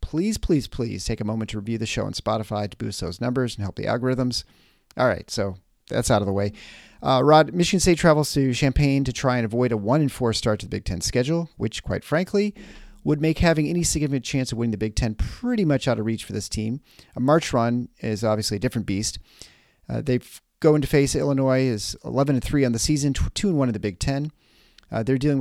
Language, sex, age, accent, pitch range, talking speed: English, male, 40-59, American, 110-145 Hz, 230 wpm